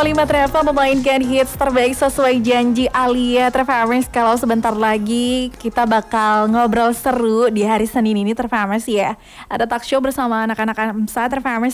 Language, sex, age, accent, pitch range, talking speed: Indonesian, female, 20-39, native, 210-250 Hz, 150 wpm